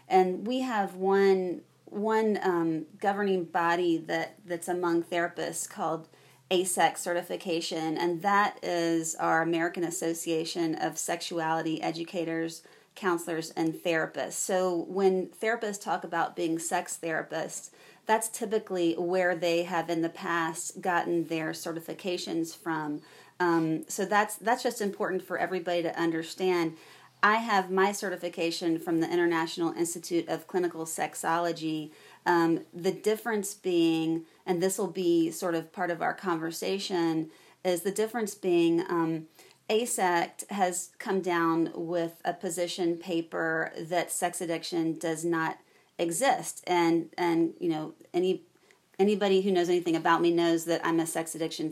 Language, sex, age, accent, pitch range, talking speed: English, female, 30-49, American, 165-185 Hz, 140 wpm